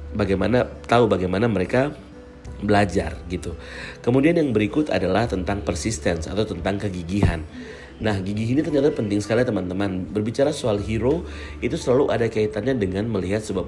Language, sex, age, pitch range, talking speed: Indonesian, male, 40-59, 95-110 Hz, 140 wpm